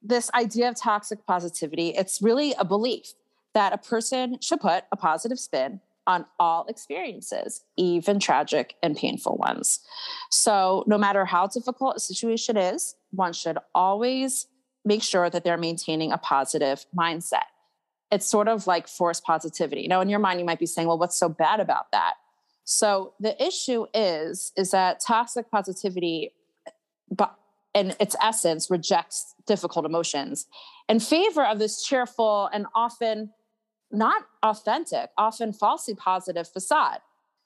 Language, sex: English, female